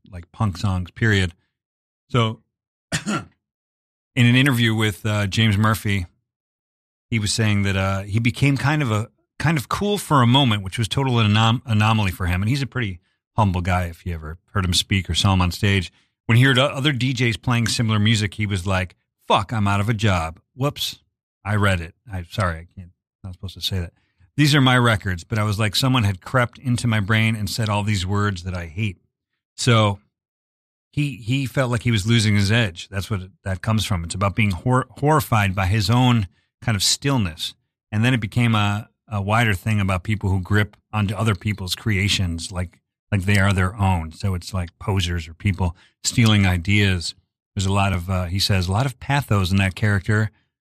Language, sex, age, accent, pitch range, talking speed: English, male, 40-59, American, 95-115 Hz, 210 wpm